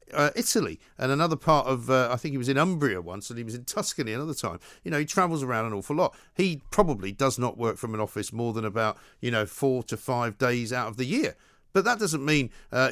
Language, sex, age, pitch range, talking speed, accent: English, male, 50-69, 115-165 Hz, 255 wpm, British